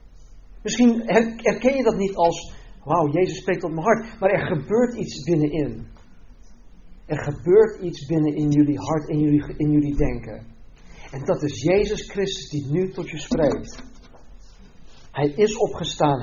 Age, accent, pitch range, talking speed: 50-69, Dutch, 140-190 Hz, 155 wpm